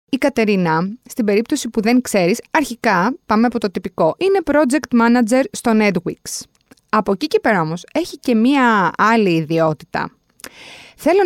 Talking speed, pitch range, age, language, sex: 150 wpm, 195-265 Hz, 20-39, Greek, female